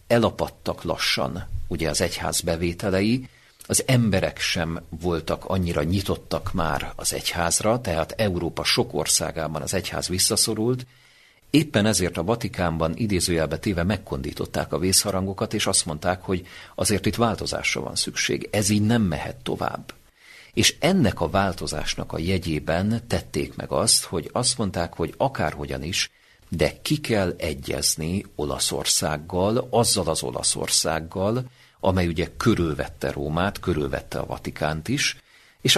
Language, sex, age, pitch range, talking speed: Hungarian, male, 50-69, 80-105 Hz, 130 wpm